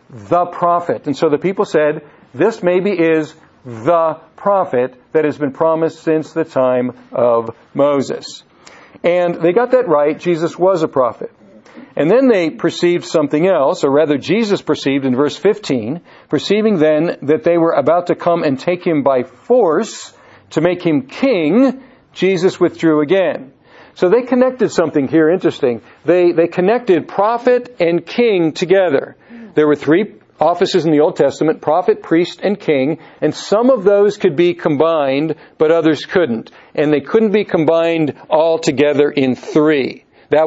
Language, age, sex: English, 50-69, male